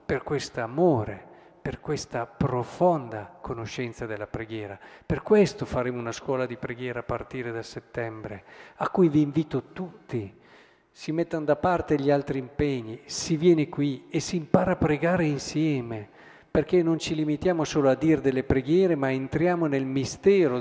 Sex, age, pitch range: male, 50-69, 120-155 Hz